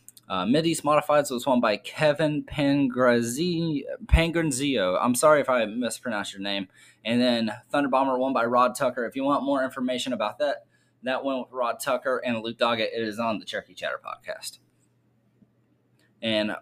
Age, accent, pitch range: 20-39, American, 120-145 Hz